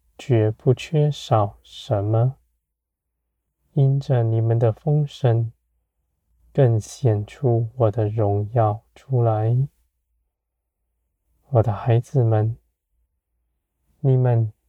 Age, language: 20-39, Chinese